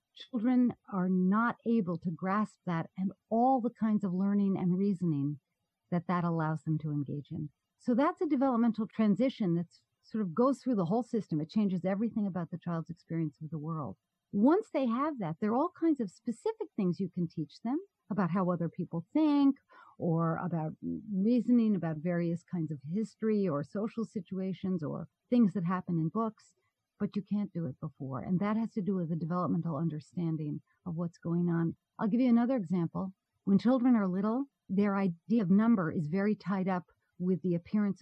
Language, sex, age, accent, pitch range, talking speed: English, female, 50-69, American, 170-225 Hz, 190 wpm